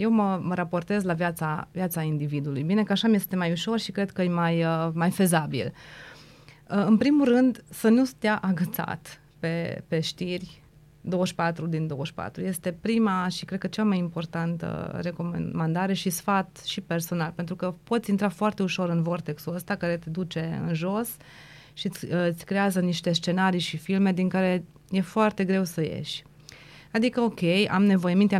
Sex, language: female, Romanian